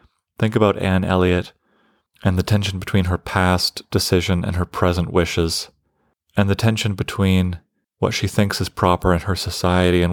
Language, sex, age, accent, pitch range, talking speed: English, male, 30-49, American, 90-105 Hz, 165 wpm